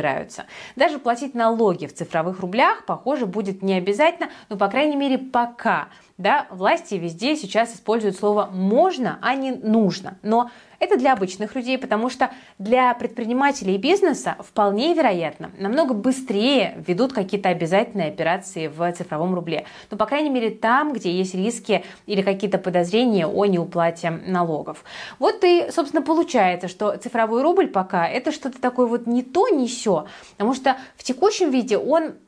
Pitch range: 190-260 Hz